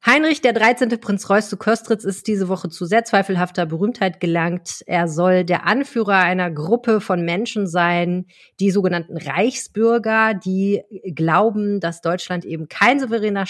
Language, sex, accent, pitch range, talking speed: German, female, German, 175-220 Hz, 150 wpm